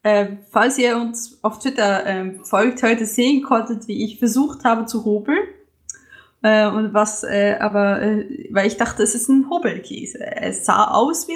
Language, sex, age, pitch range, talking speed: German, female, 20-39, 205-255 Hz, 180 wpm